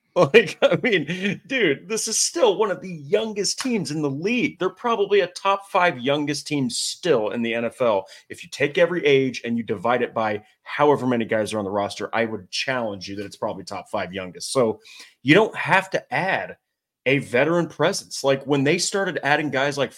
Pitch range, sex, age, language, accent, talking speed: 115-175 Hz, male, 30-49, English, American, 205 wpm